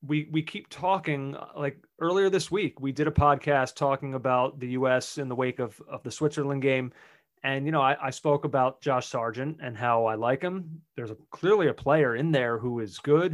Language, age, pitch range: English, 30-49, 135-155 Hz